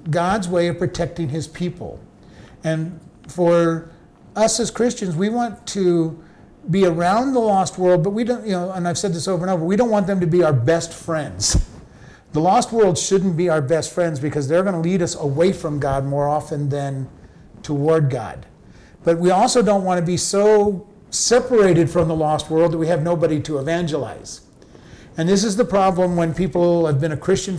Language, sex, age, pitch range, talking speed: English, male, 50-69, 155-190 Hz, 200 wpm